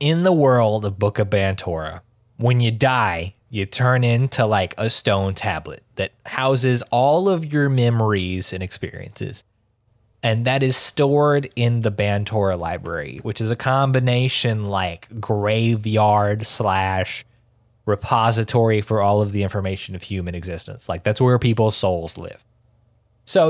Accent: American